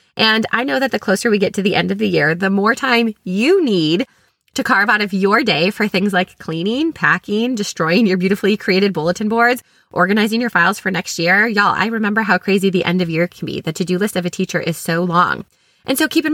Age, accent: 20-39, American